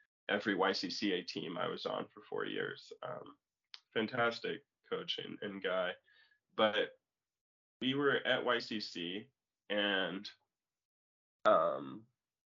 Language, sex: English, male